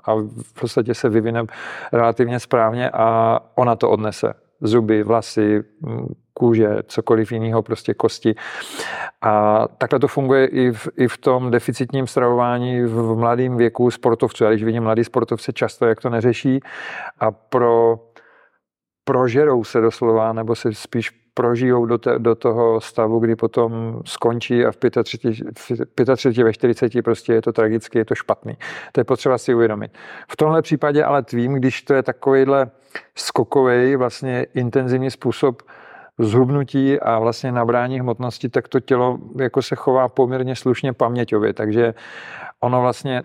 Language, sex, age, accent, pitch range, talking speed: Czech, male, 40-59, native, 115-130 Hz, 145 wpm